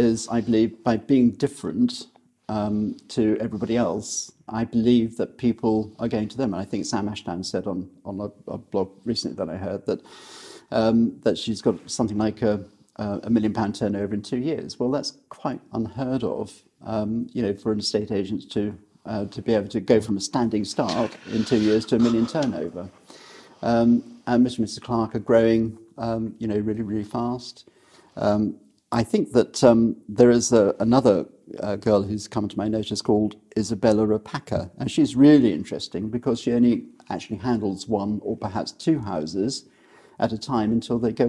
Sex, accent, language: male, British, English